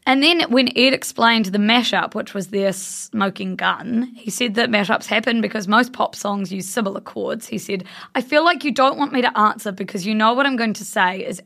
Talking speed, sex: 230 wpm, female